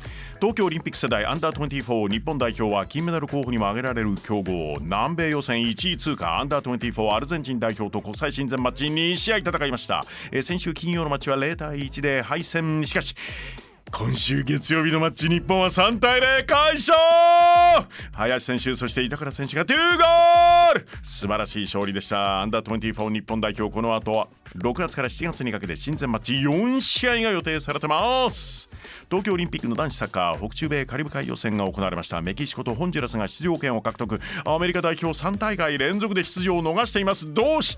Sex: male